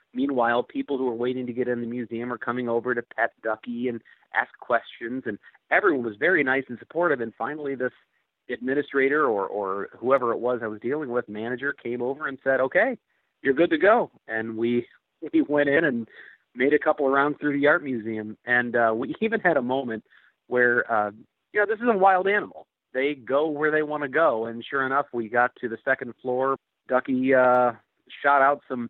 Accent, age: American, 40-59